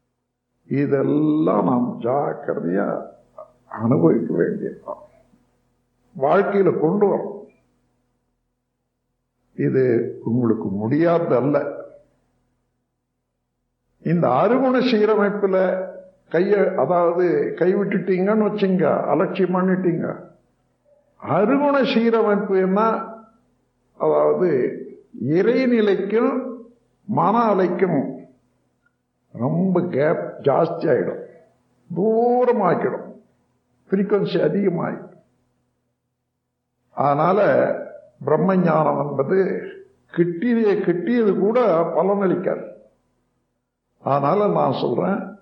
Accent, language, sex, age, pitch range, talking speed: native, Tamil, male, 50-69, 170-235 Hz, 50 wpm